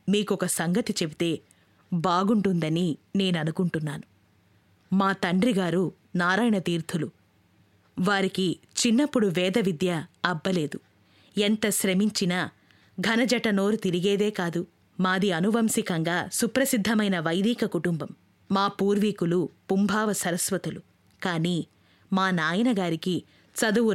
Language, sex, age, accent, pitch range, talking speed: Telugu, female, 20-39, native, 165-210 Hz, 85 wpm